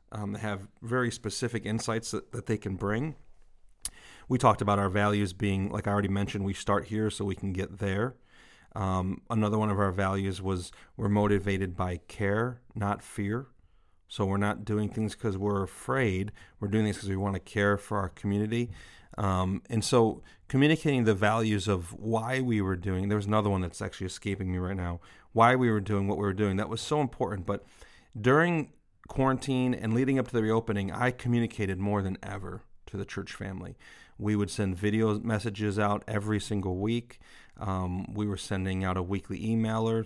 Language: English